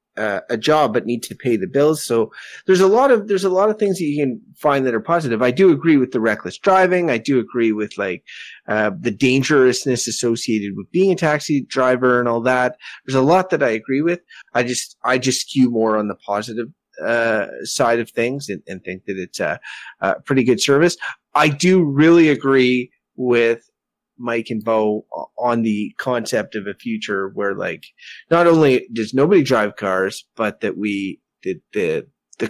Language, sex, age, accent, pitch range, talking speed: English, male, 30-49, American, 115-165 Hz, 200 wpm